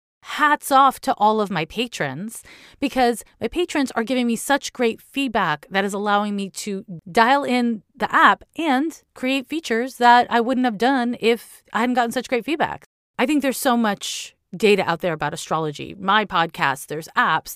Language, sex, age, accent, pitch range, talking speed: English, female, 30-49, American, 185-245 Hz, 185 wpm